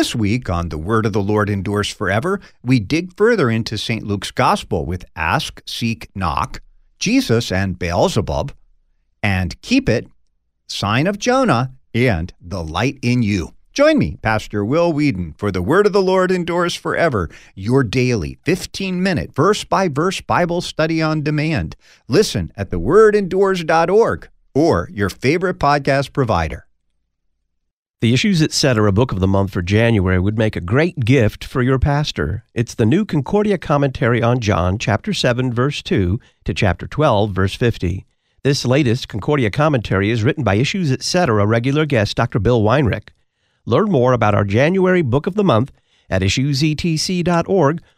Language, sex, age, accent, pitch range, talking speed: English, male, 50-69, American, 100-155 Hz, 155 wpm